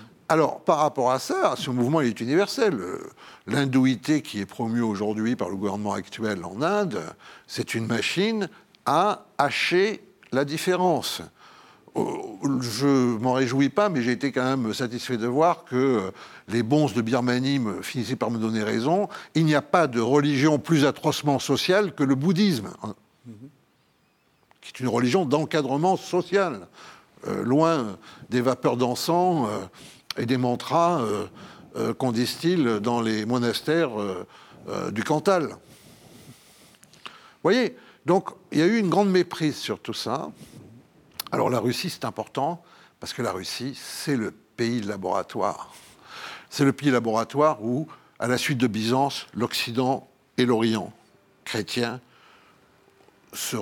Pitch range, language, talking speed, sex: 120-155 Hz, French, 145 wpm, male